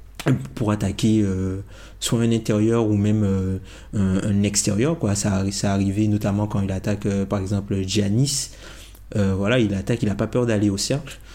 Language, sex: French, male